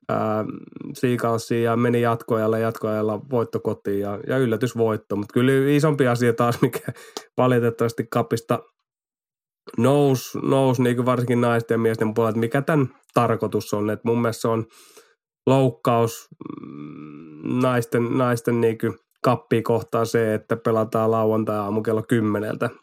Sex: male